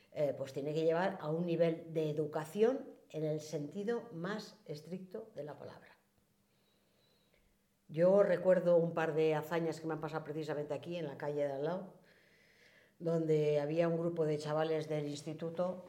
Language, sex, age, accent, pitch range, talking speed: Spanish, female, 50-69, Spanish, 155-185 Hz, 165 wpm